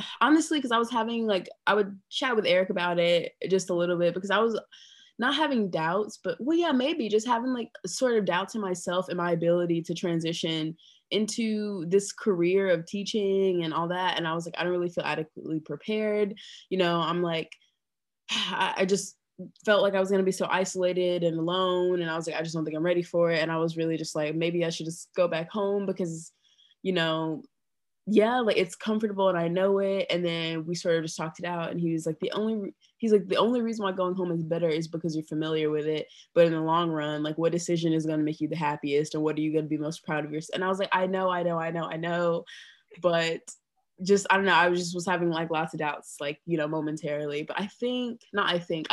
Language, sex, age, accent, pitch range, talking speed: English, female, 20-39, American, 160-195 Hz, 250 wpm